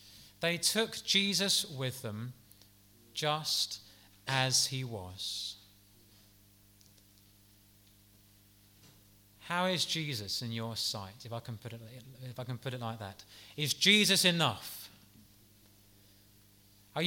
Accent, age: British, 30-49